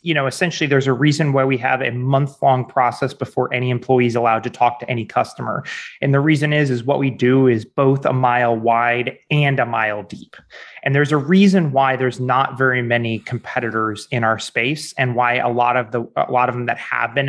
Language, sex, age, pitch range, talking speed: English, male, 30-49, 120-140 Hz, 225 wpm